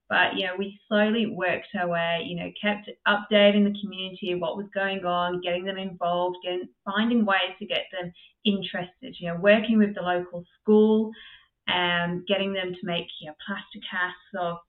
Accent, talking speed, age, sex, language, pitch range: Australian, 190 wpm, 20-39, female, English, 180-210 Hz